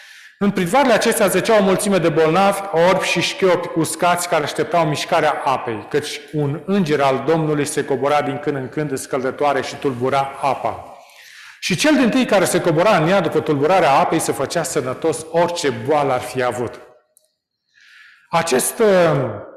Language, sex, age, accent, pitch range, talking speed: Romanian, male, 40-59, native, 145-185 Hz, 155 wpm